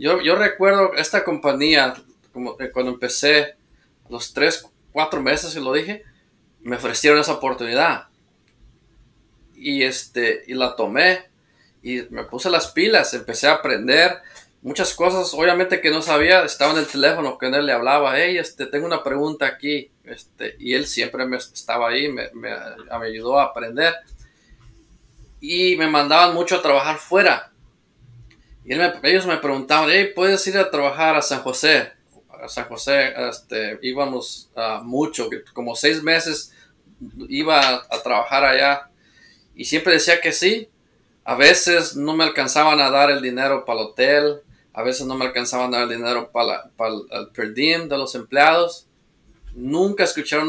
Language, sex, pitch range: Spanish, male, 125-165 Hz